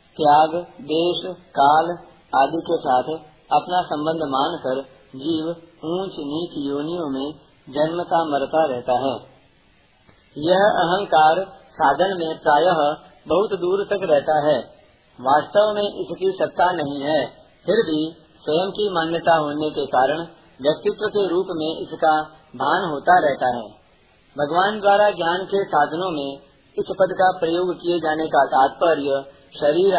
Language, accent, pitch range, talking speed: Hindi, native, 150-180 Hz, 130 wpm